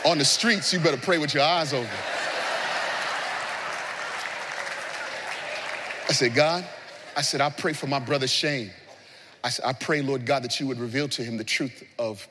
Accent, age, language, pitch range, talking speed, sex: American, 30-49, English, 120-195 Hz, 175 wpm, male